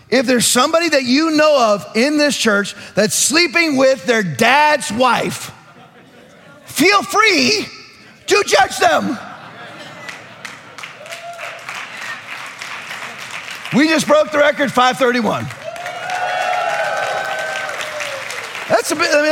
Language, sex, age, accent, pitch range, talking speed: English, male, 40-59, American, 165-270 Hz, 85 wpm